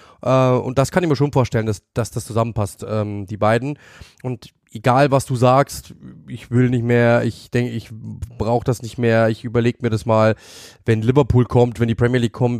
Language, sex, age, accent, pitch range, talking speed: German, male, 20-39, German, 110-125 Hz, 210 wpm